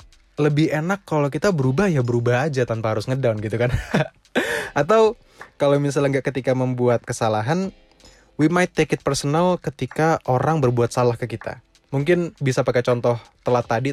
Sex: male